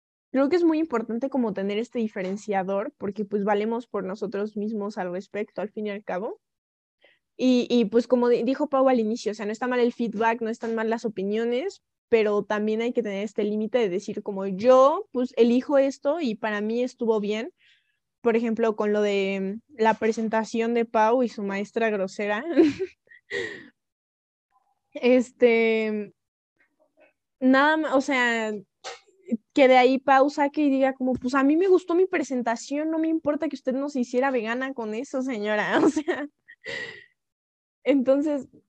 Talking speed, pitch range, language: 165 wpm, 215-275 Hz, Spanish